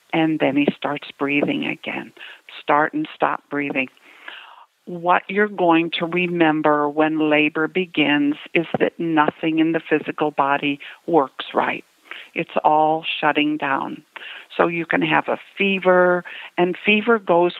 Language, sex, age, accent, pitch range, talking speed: English, female, 50-69, American, 150-180 Hz, 135 wpm